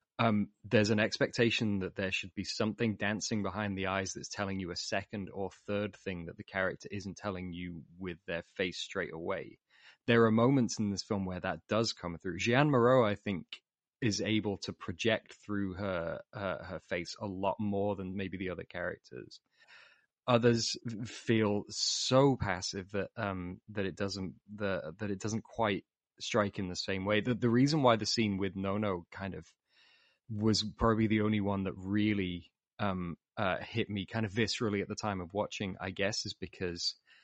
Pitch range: 95-110 Hz